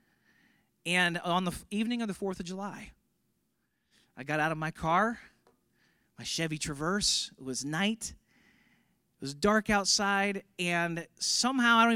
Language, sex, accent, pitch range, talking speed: English, male, American, 145-235 Hz, 145 wpm